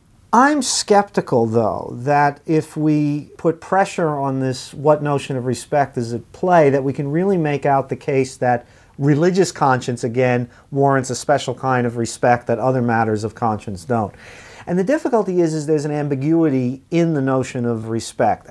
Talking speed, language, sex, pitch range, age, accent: 175 wpm, English, male, 120-155 Hz, 40-59, American